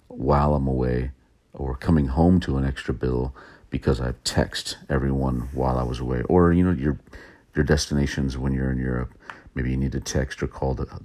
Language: English